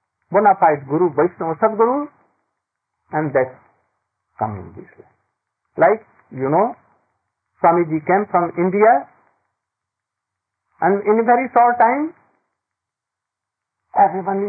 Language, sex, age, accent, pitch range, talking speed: English, male, 50-69, Indian, 135-205 Hz, 95 wpm